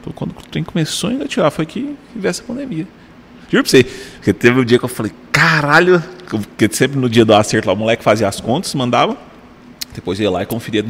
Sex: male